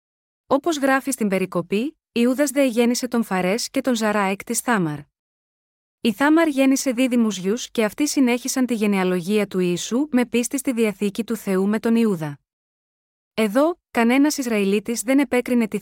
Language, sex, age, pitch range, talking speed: Greek, female, 20-39, 205-255 Hz, 160 wpm